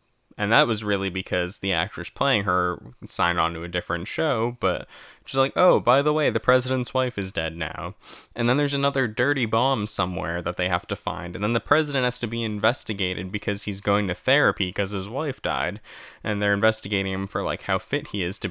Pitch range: 95-140 Hz